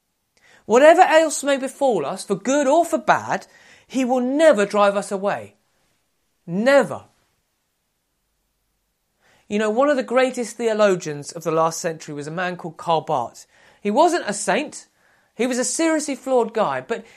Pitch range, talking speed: 175-260 Hz, 155 wpm